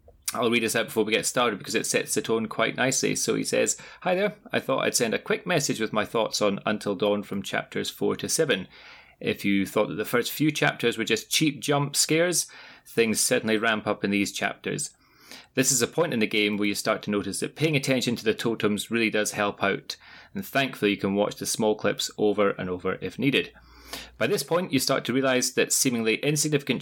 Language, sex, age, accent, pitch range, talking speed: English, male, 30-49, British, 105-140 Hz, 230 wpm